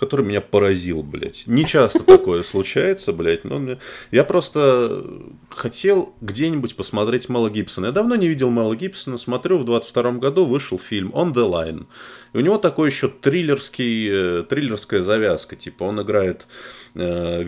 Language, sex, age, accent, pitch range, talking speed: Russian, male, 20-39, native, 95-150 Hz, 155 wpm